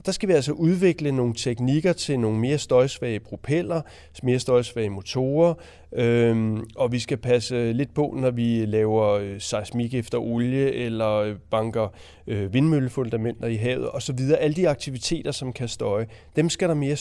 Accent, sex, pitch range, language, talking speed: native, male, 115-155 Hz, Danish, 160 wpm